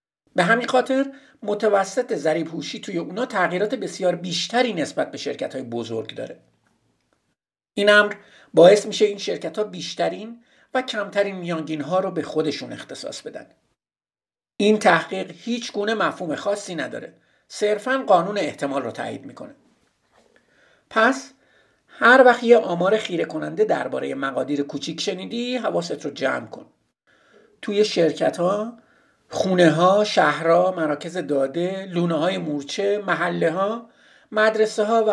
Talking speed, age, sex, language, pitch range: 125 wpm, 50-69, male, Persian, 165-235 Hz